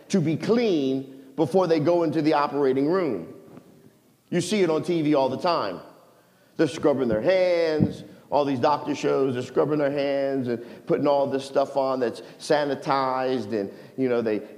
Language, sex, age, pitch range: English, male, 50-69, 125-160 Hz